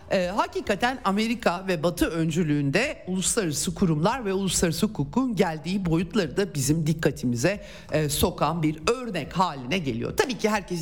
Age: 50-69